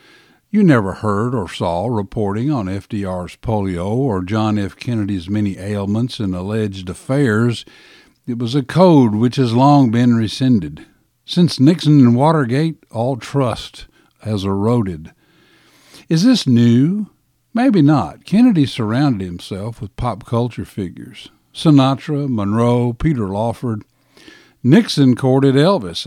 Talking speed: 125 wpm